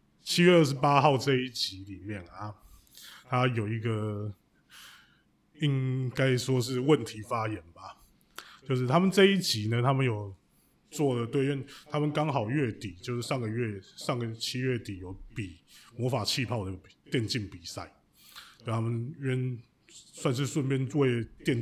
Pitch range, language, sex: 110-140 Hz, Chinese, male